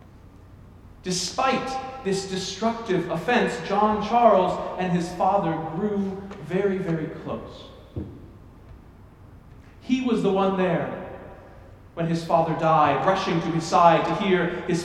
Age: 40-59